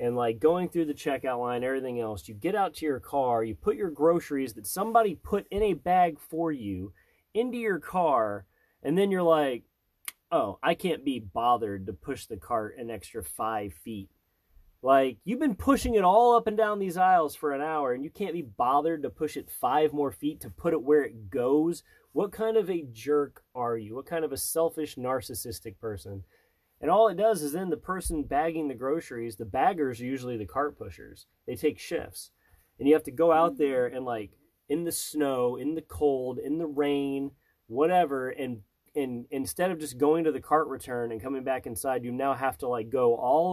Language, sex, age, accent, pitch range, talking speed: English, male, 30-49, American, 120-170 Hz, 210 wpm